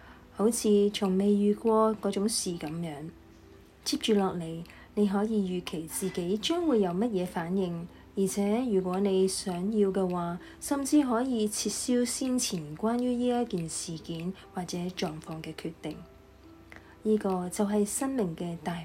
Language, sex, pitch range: Chinese, female, 175-215 Hz